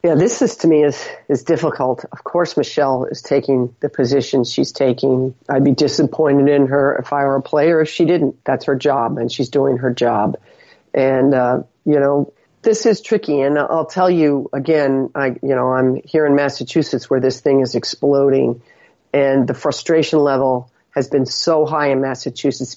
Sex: female